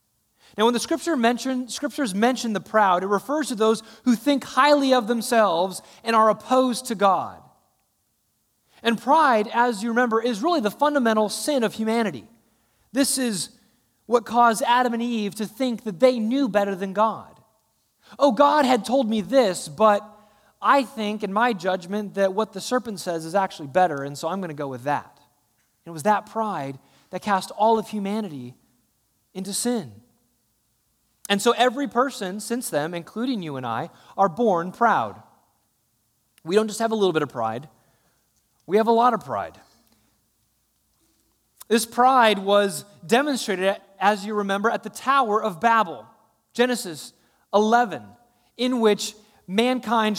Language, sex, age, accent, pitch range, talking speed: English, male, 30-49, American, 190-240 Hz, 160 wpm